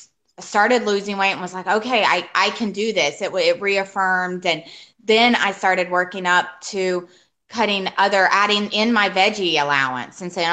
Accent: American